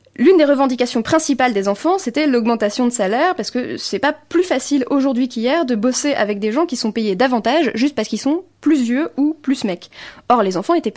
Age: 20-39